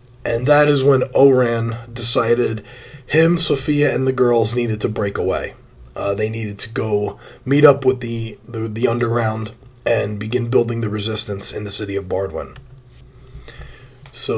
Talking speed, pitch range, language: 160 wpm, 115-135 Hz, English